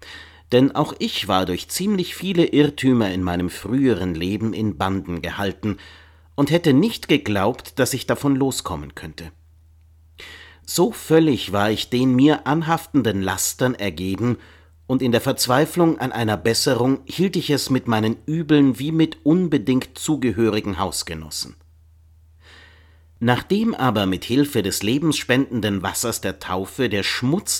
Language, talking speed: German, 135 wpm